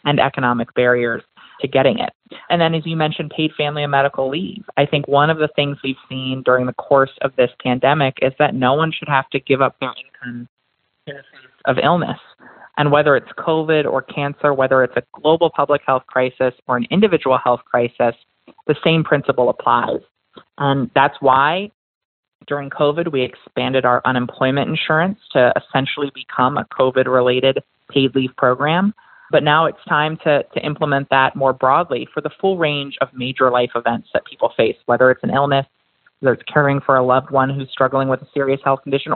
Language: English